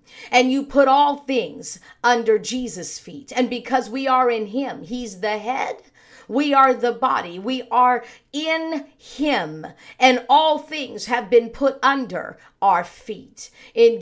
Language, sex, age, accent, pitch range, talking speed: English, female, 50-69, American, 215-270 Hz, 150 wpm